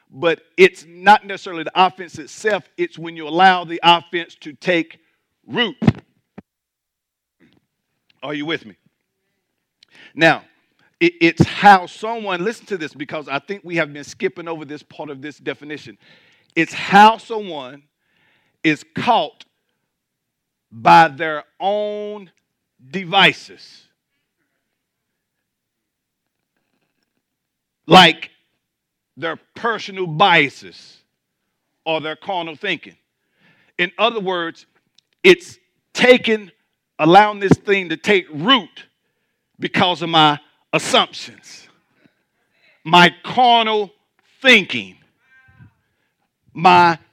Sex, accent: male, American